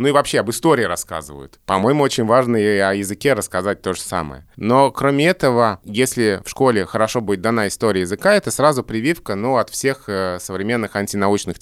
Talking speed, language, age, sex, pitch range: 180 wpm, Russian, 20-39, male, 95-130 Hz